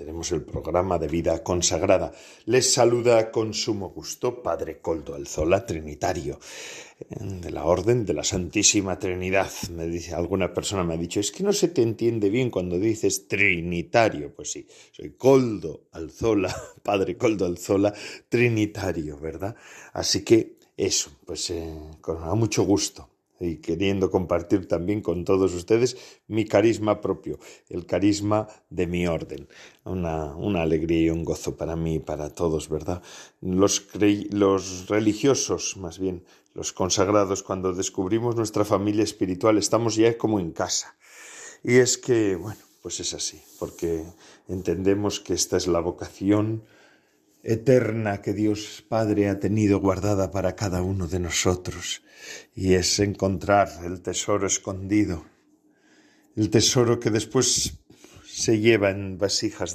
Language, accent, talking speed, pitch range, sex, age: Spanish, Spanish, 140 wpm, 90-110 Hz, male, 40-59